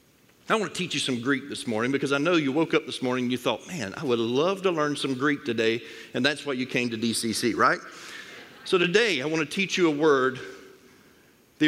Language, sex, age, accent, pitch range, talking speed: English, male, 50-69, American, 130-180 Hz, 240 wpm